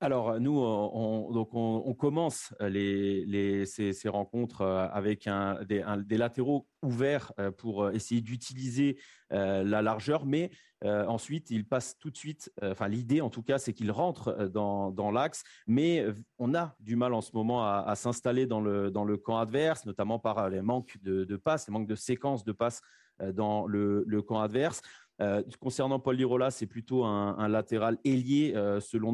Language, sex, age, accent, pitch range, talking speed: French, male, 30-49, French, 105-125 Hz, 185 wpm